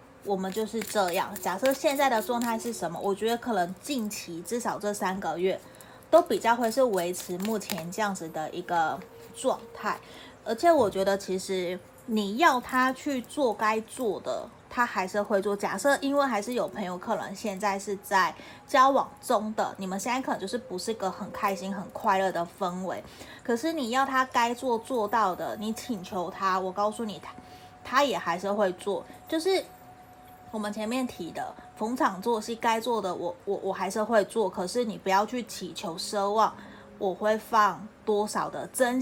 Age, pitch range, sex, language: 20-39, 195-245 Hz, female, Chinese